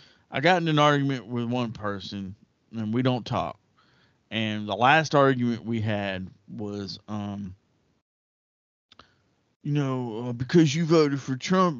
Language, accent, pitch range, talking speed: English, American, 115-155 Hz, 140 wpm